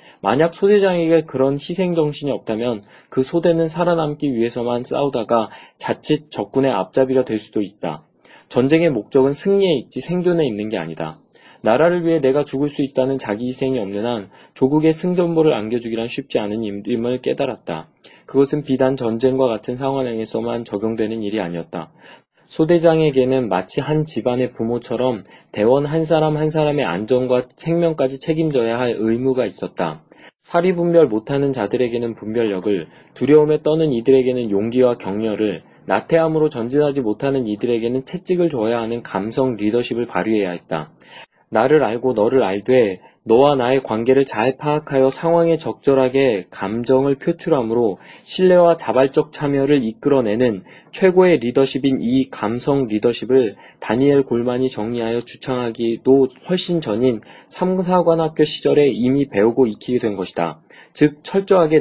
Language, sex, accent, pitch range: Korean, male, native, 115-155 Hz